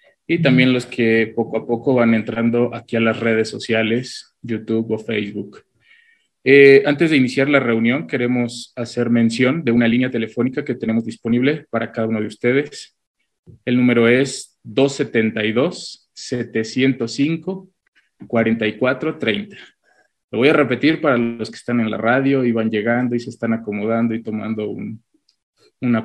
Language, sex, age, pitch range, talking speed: Spanish, male, 20-39, 115-130 Hz, 145 wpm